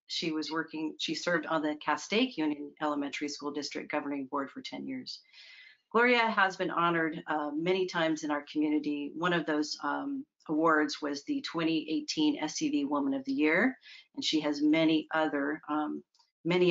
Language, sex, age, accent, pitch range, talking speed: English, female, 40-59, American, 150-185 Hz, 170 wpm